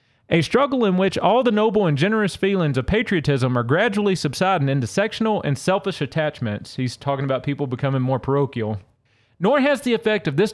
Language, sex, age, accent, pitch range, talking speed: English, male, 30-49, American, 140-200 Hz, 190 wpm